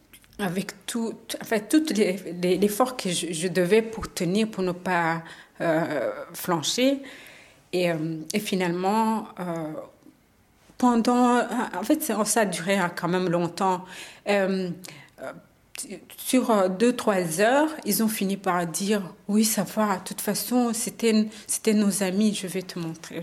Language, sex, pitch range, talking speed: French, female, 175-220 Hz, 145 wpm